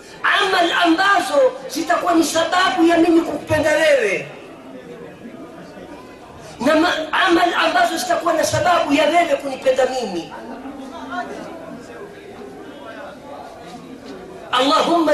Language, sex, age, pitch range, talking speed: Swahili, female, 40-59, 260-340 Hz, 60 wpm